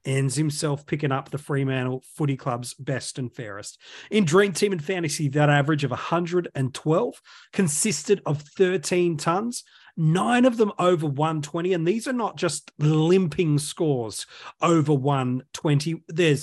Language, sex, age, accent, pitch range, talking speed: English, male, 30-49, Australian, 145-180 Hz, 140 wpm